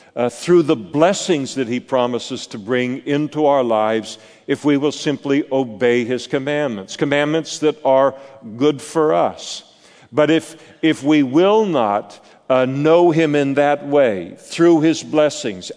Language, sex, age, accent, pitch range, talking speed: English, male, 50-69, American, 120-150 Hz, 150 wpm